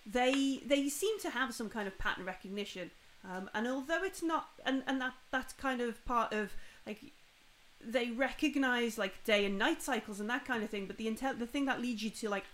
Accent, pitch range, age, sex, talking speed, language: British, 220-280 Hz, 30-49, female, 220 wpm, English